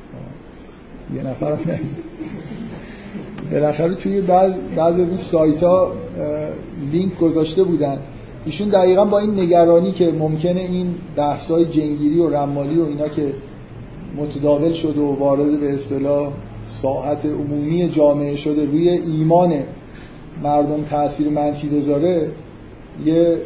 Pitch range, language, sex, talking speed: 145-170 Hz, Persian, male, 120 wpm